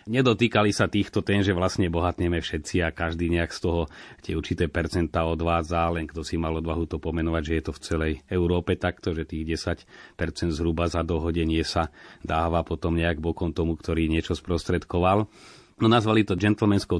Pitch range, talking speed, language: 85-105 Hz, 175 wpm, Slovak